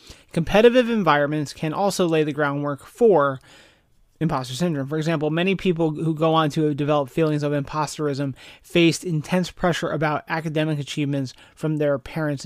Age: 30-49